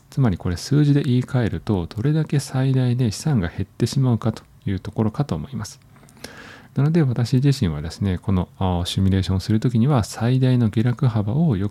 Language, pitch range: Japanese, 95-130 Hz